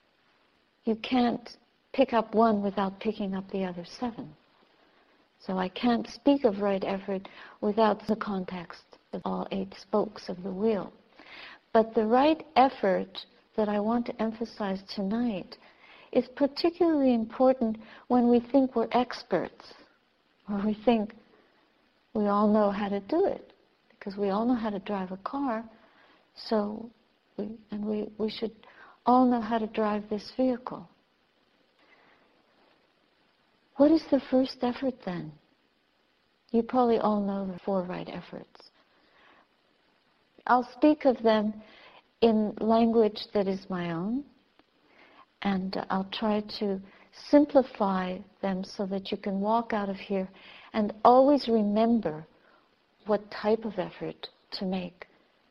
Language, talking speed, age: English, 135 wpm, 60-79